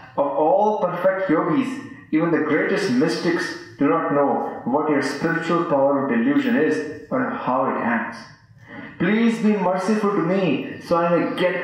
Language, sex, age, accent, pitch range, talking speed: English, male, 30-49, Indian, 145-210 Hz, 160 wpm